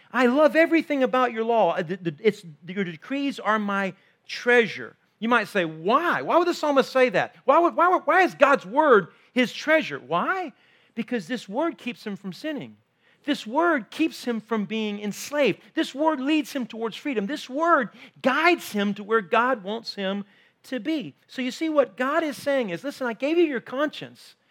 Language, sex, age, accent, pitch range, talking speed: English, male, 40-59, American, 195-290 Hz, 185 wpm